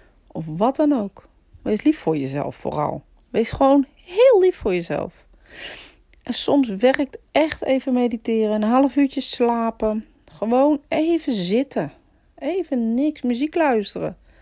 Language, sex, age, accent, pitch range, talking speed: Dutch, female, 40-59, Dutch, 175-250 Hz, 135 wpm